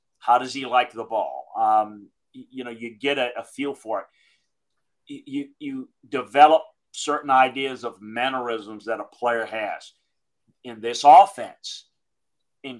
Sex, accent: male, American